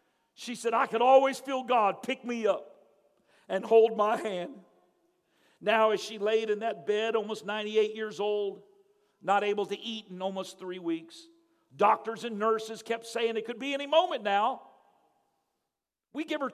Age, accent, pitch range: 50-69, American, 170-235 Hz